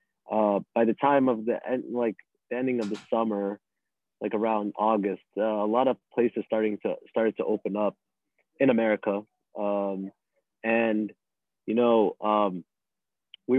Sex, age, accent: male, 20-39, American